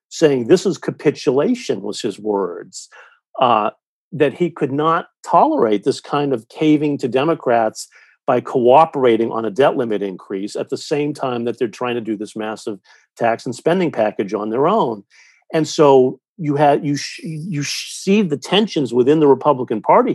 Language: English